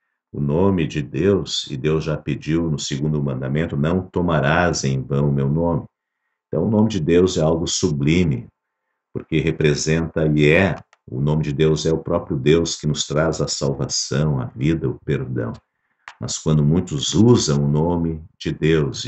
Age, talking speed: 50-69, 175 wpm